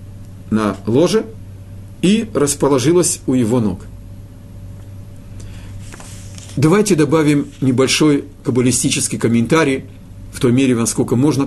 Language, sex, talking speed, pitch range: Russian, male, 90 wpm, 95-140 Hz